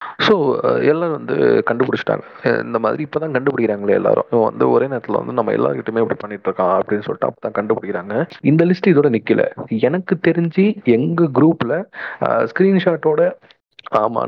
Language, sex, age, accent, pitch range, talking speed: Tamil, male, 30-49, native, 120-175 Hz, 145 wpm